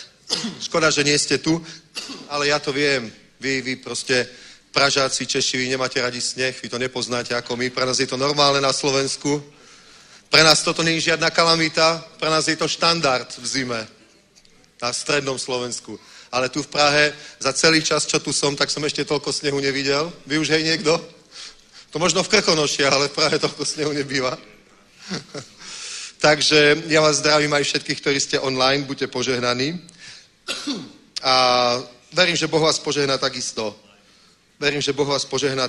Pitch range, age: 130-155 Hz, 40-59